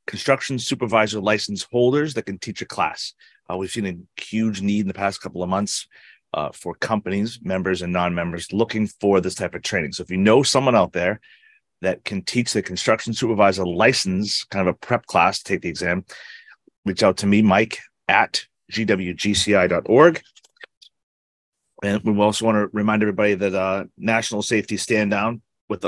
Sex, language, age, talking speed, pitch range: male, English, 30-49, 180 wpm, 95-110 Hz